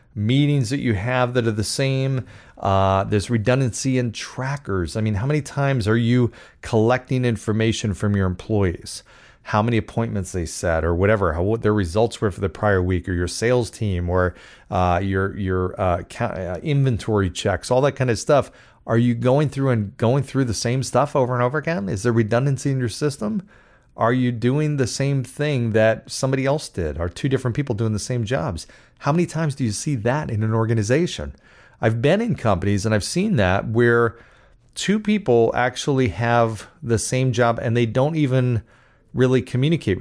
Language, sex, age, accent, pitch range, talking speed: English, male, 30-49, American, 105-130 Hz, 190 wpm